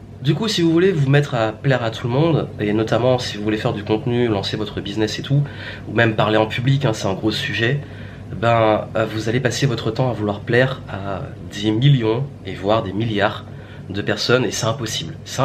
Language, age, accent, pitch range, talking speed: French, 30-49, French, 115-145 Hz, 225 wpm